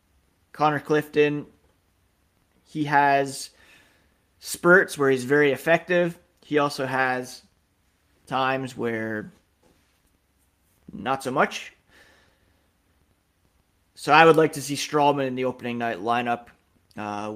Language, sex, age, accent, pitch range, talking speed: English, male, 30-49, American, 90-145 Hz, 105 wpm